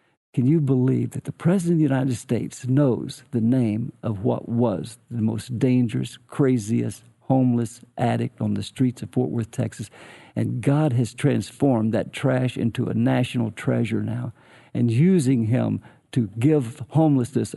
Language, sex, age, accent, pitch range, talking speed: English, male, 60-79, American, 115-140 Hz, 155 wpm